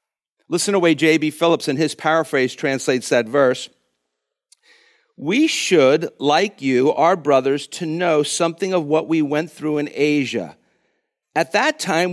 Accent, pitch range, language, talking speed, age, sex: American, 130-180 Hz, English, 155 wpm, 50-69, male